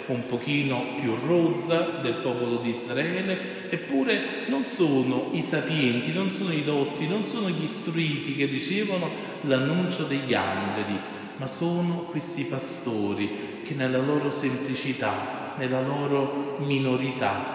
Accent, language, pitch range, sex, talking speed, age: native, Italian, 135-190 Hz, male, 125 wpm, 40-59